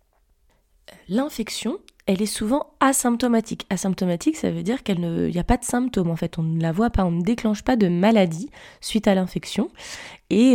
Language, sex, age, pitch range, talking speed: French, female, 20-39, 175-210 Hz, 180 wpm